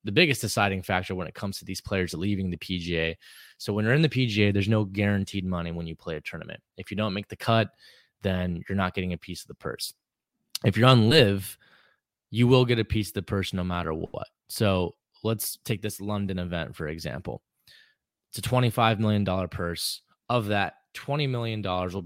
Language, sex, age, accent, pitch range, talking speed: English, male, 20-39, American, 90-110 Hz, 205 wpm